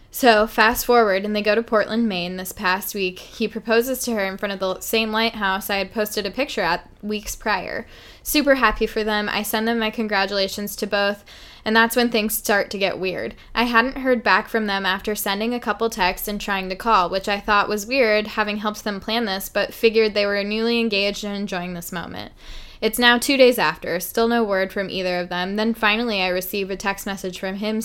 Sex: female